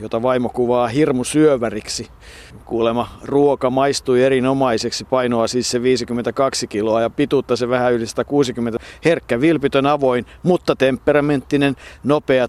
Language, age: Finnish, 50-69